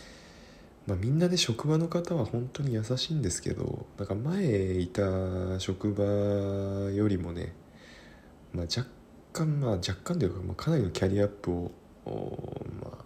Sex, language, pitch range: male, Japanese, 85-120 Hz